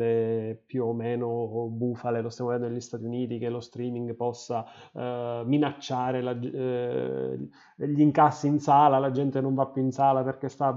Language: Italian